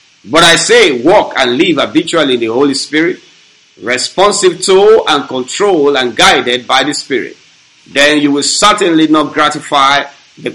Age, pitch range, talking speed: 50-69, 140-175 Hz, 155 wpm